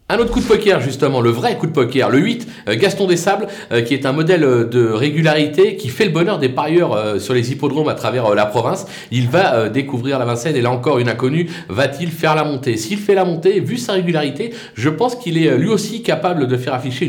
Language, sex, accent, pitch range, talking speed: French, male, French, 130-170 Hz, 230 wpm